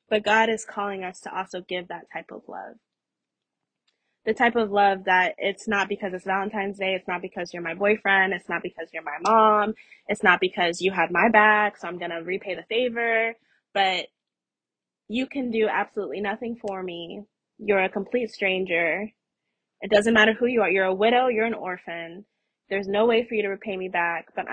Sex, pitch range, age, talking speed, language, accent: female, 185-215 Hz, 20-39, 205 wpm, English, American